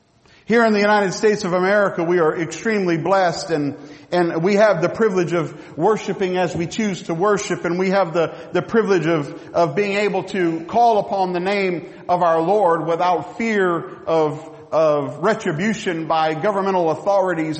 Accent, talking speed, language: American, 170 wpm, English